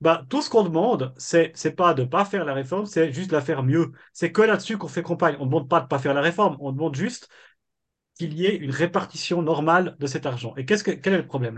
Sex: male